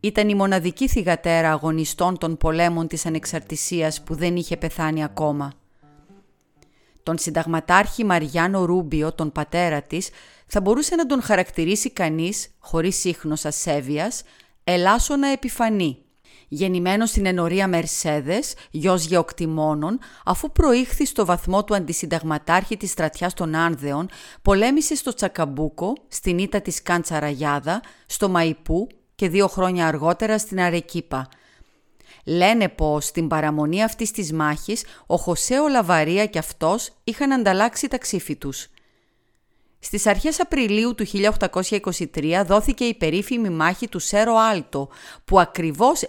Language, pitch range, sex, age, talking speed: Greek, 160-210 Hz, female, 30-49, 115 wpm